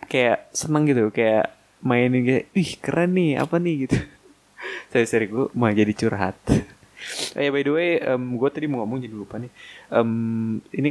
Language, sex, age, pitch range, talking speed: Indonesian, male, 20-39, 105-130 Hz, 180 wpm